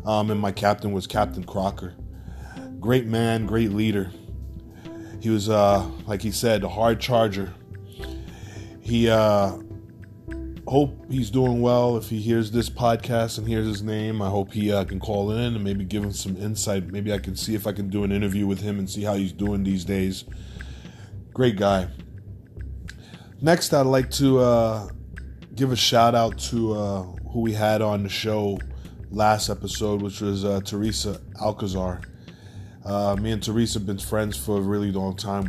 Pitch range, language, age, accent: 95-110 Hz, English, 20-39, American